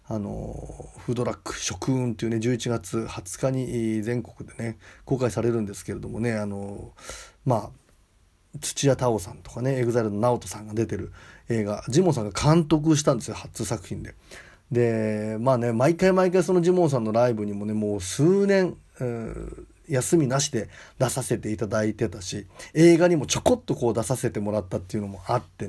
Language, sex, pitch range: Japanese, male, 105-140 Hz